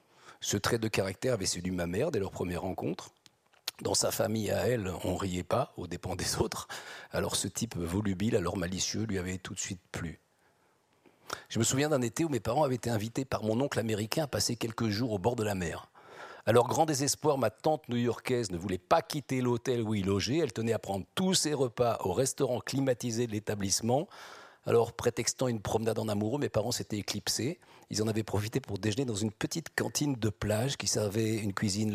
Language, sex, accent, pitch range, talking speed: French, male, French, 105-135 Hz, 210 wpm